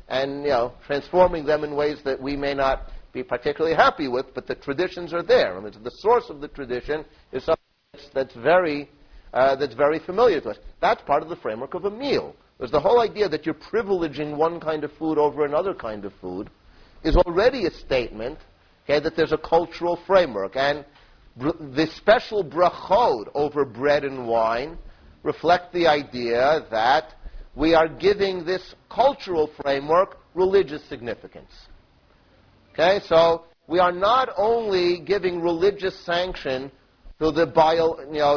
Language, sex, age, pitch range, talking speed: English, male, 50-69, 145-180 Hz, 160 wpm